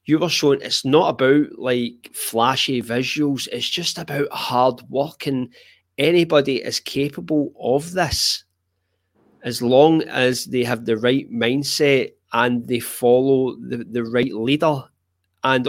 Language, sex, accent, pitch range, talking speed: English, male, British, 120-155 Hz, 140 wpm